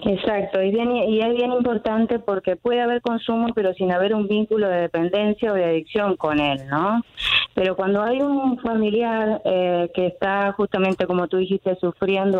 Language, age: Spanish, 20-39